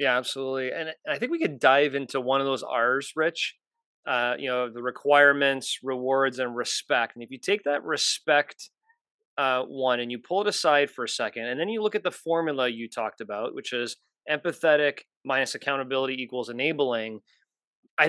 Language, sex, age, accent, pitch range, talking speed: English, male, 30-49, American, 135-200 Hz, 185 wpm